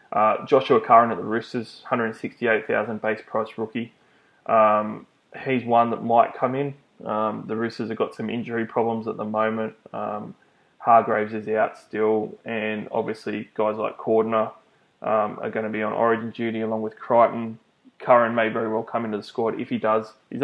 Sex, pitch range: male, 110-115 Hz